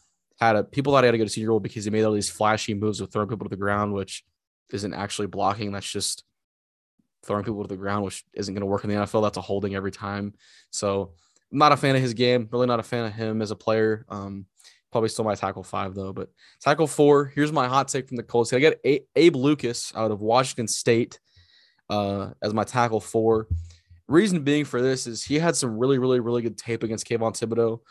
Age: 20-39